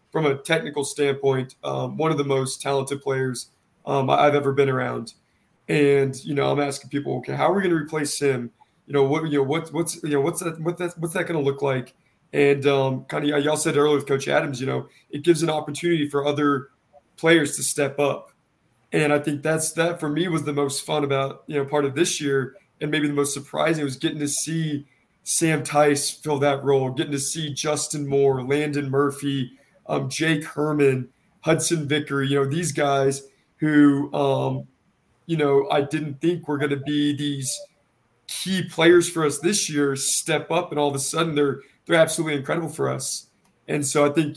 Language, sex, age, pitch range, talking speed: English, male, 20-39, 140-155 Hz, 195 wpm